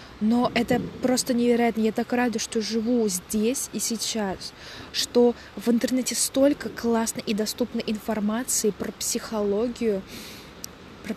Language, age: Russian, 20-39